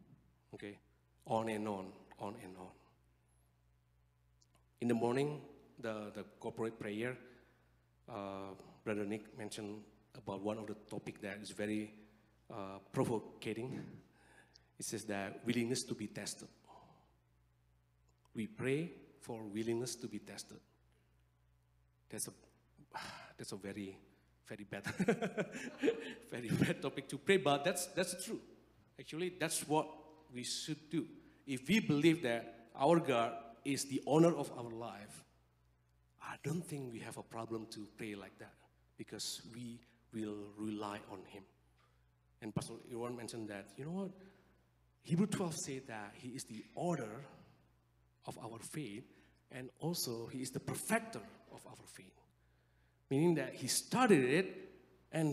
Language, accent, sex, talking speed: English, Malaysian, male, 140 wpm